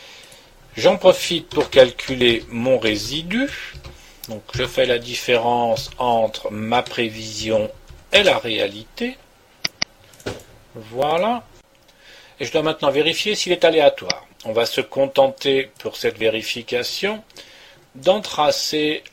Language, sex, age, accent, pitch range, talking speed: French, male, 40-59, French, 110-150 Hz, 110 wpm